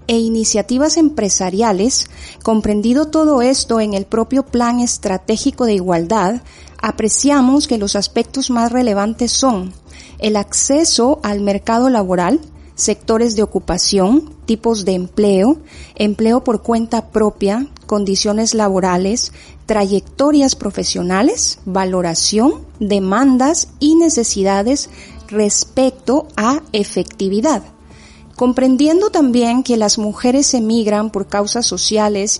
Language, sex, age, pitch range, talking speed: Spanish, female, 30-49, 195-255 Hz, 100 wpm